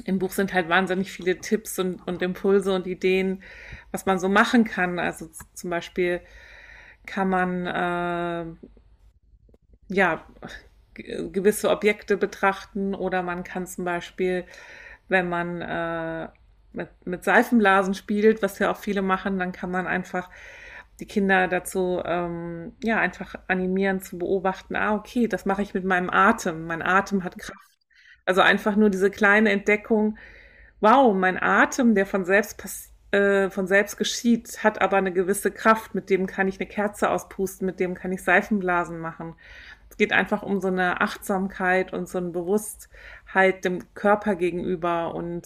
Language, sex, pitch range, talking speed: German, female, 180-205 Hz, 160 wpm